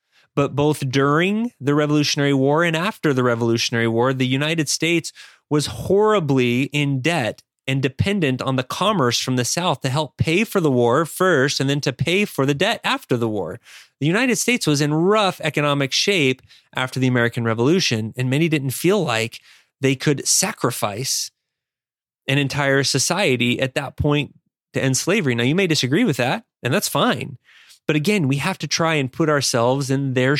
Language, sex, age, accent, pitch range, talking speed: English, male, 30-49, American, 125-165 Hz, 180 wpm